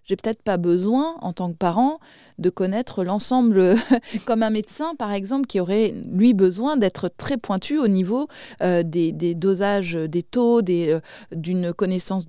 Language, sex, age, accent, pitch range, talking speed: French, female, 30-49, French, 180-235 Hz, 170 wpm